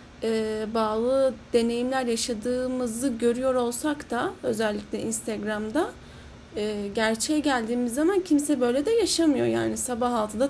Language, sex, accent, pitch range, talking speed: Turkish, female, native, 220-260 Hz, 115 wpm